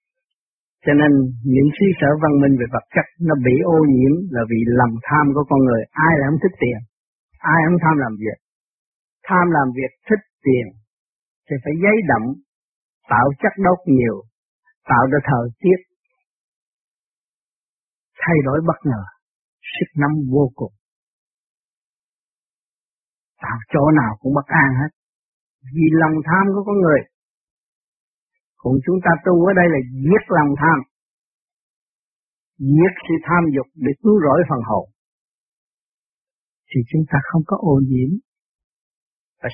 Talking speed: 145 wpm